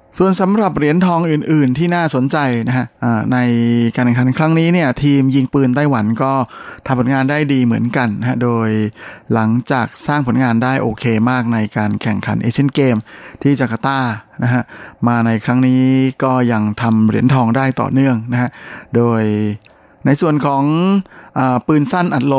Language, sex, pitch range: Thai, male, 120-140 Hz